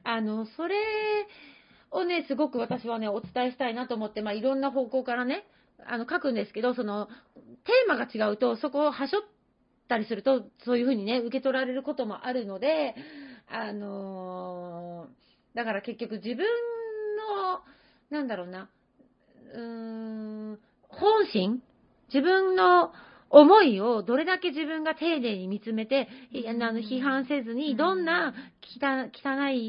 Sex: female